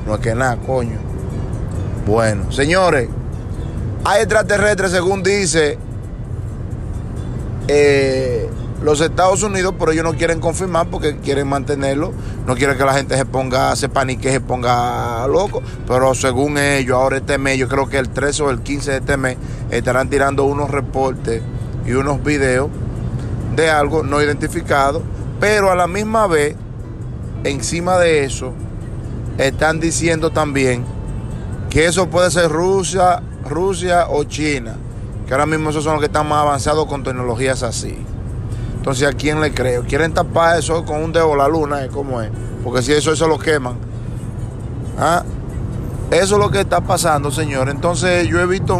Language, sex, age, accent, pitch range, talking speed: Spanish, male, 30-49, Venezuelan, 120-150 Hz, 160 wpm